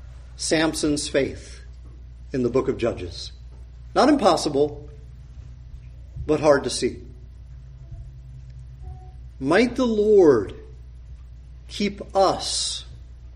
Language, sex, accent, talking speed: English, male, American, 80 wpm